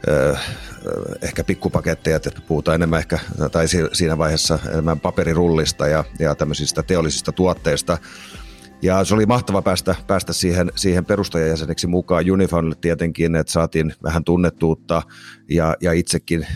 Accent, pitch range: native, 80-90 Hz